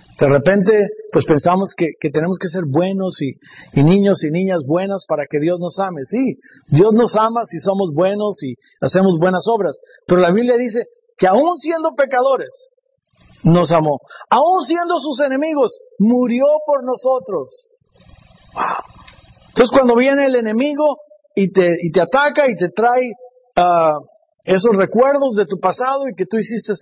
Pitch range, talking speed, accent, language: 170-260 Hz, 155 wpm, Mexican, English